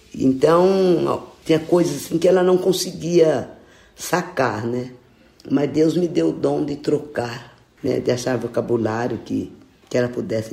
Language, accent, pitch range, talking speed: Portuguese, Brazilian, 135-185 Hz, 150 wpm